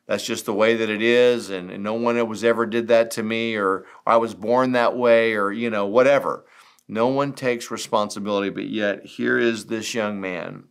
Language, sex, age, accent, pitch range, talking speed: English, male, 50-69, American, 95-120 Hz, 215 wpm